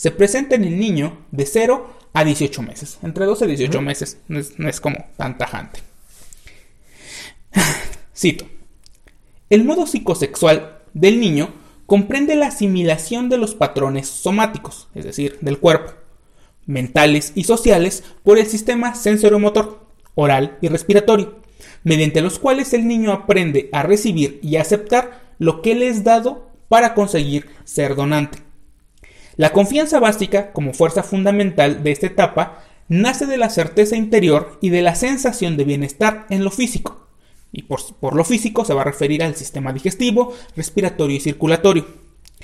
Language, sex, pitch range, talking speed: Spanish, male, 150-220 Hz, 150 wpm